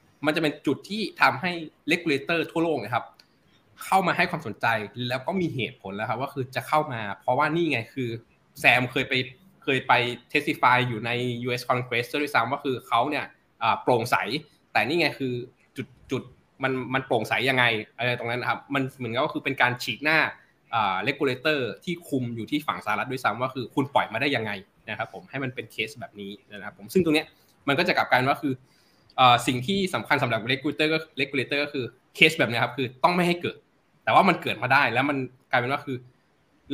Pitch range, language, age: 120-150 Hz, Thai, 20-39